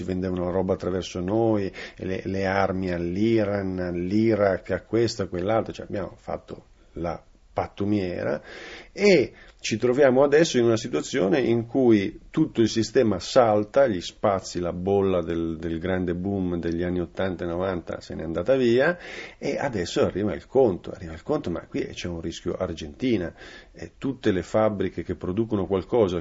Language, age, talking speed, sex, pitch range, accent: Italian, 40-59, 155 wpm, male, 90-110 Hz, native